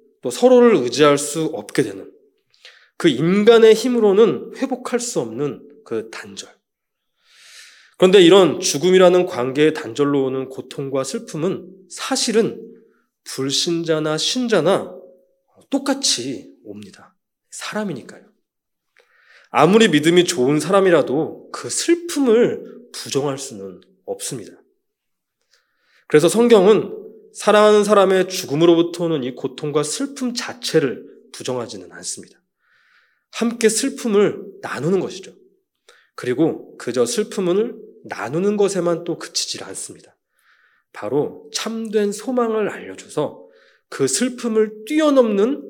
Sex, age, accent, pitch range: male, 20-39, native, 160-240 Hz